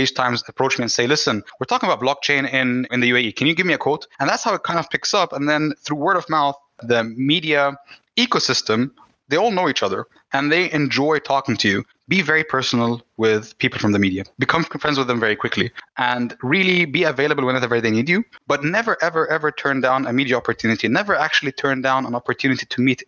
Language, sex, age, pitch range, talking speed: English, male, 20-39, 115-145 Hz, 225 wpm